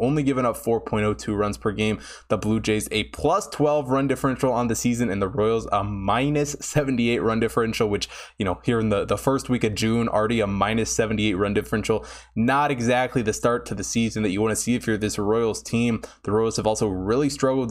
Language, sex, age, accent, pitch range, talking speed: English, male, 20-39, American, 110-135 Hz, 225 wpm